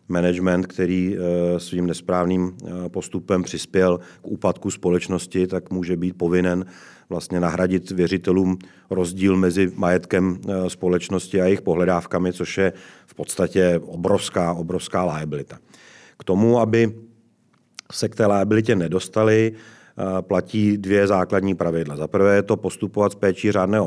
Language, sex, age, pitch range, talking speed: Czech, male, 40-59, 90-100 Hz, 125 wpm